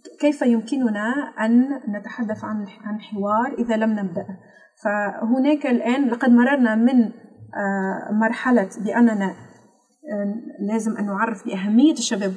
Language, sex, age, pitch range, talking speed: Arabic, female, 30-49, 205-240 Hz, 100 wpm